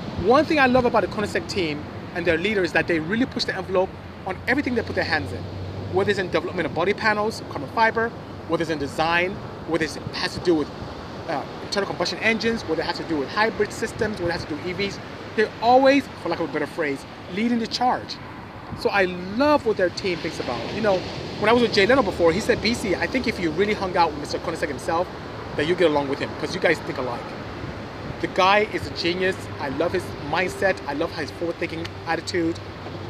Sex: male